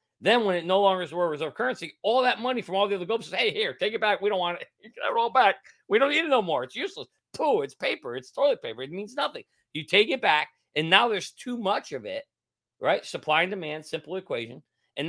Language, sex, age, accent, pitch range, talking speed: English, male, 40-59, American, 115-170 Hz, 265 wpm